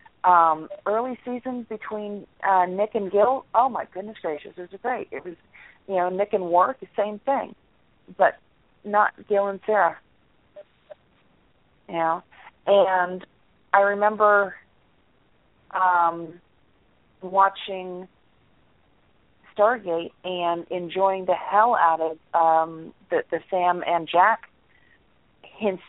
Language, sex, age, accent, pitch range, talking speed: English, female, 40-59, American, 175-215 Hz, 120 wpm